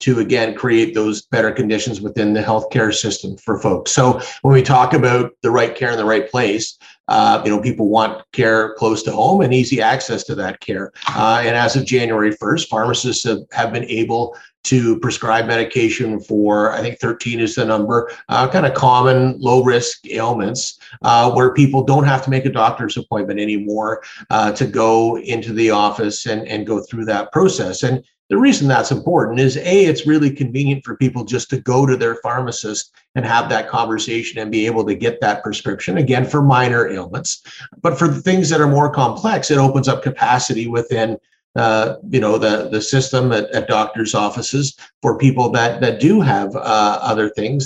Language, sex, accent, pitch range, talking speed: English, male, American, 110-135 Hz, 195 wpm